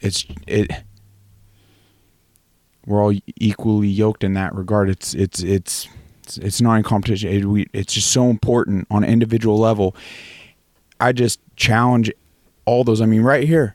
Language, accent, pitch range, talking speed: English, American, 95-115 Hz, 150 wpm